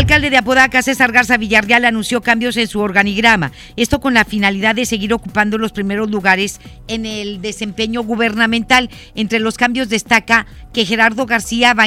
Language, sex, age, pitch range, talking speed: Spanish, female, 50-69, 205-235 Hz, 175 wpm